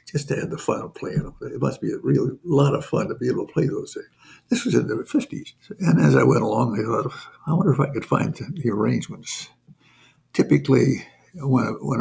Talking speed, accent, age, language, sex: 215 wpm, American, 60-79, English, male